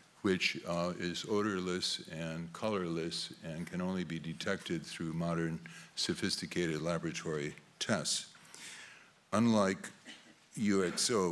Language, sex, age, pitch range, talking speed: English, male, 60-79, 80-95 Hz, 95 wpm